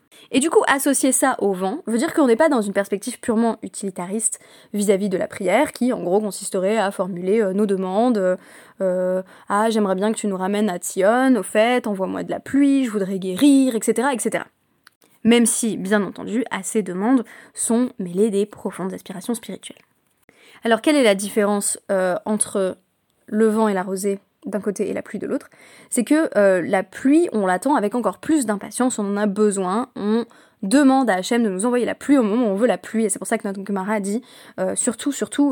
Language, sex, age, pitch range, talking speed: French, female, 20-39, 195-245 Hz, 210 wpm